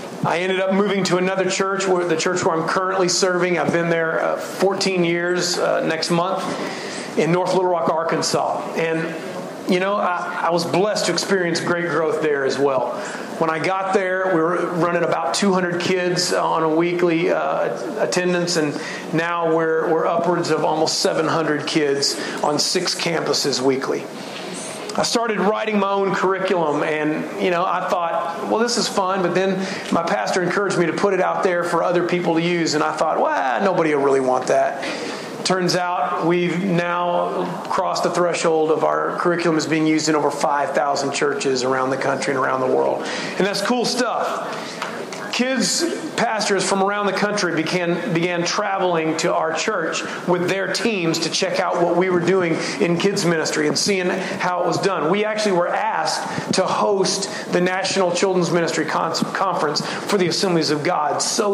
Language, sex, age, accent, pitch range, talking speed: English, male, 40-59, American, 165-190 Hz, 180 wpm